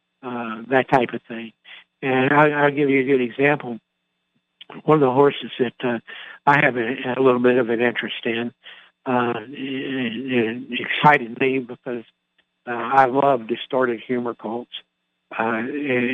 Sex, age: male, 60-79